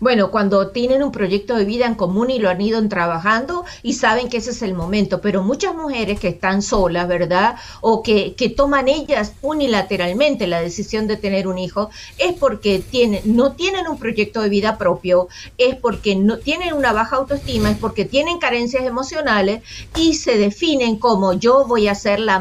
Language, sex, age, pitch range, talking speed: Spanish, female, 50-69, 190-250 Hz, 190 wpm